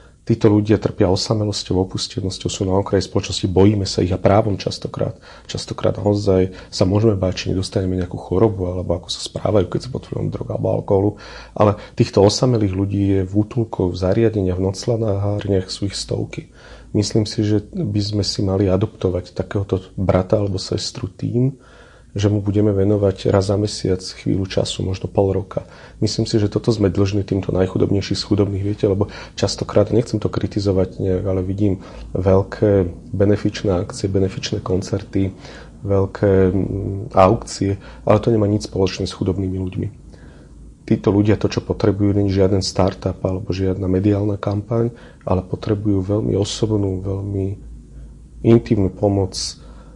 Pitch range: 95-105 Hz